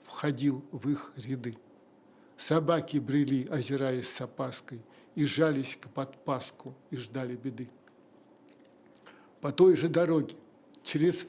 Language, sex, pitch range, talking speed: Russian, male, 145-180 Hz, 110 wpm